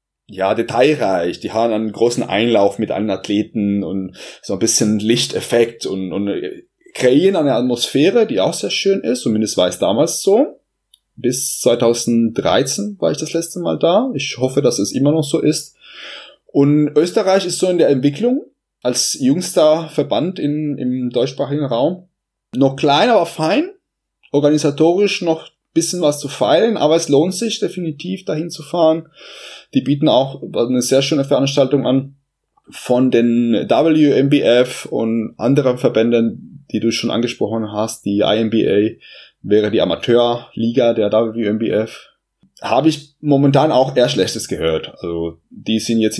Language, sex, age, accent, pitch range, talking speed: German, male, 20-39, German, 110-155 Hz, 150 wpm